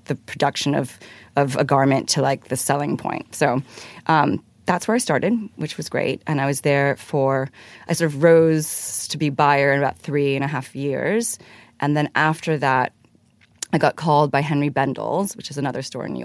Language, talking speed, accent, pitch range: English, 205 wpm, American, 135-155 Hz